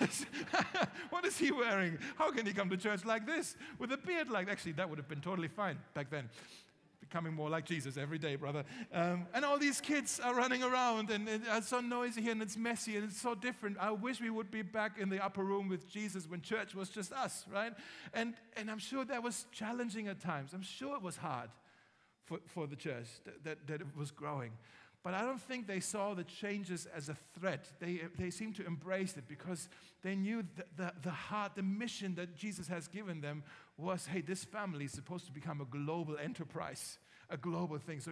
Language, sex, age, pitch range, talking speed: German, male, 50-69, 150-210 Hz, 220 wpm